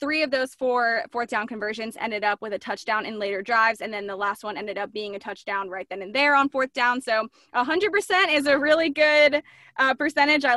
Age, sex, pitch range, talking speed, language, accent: 20-39, female, 220-285 Hz, 245 wpm, English, American